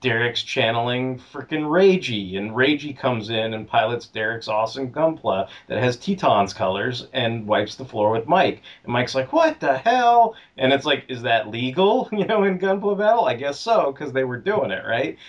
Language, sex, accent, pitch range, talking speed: English, male, American, 110-145 Hz, 190 wpm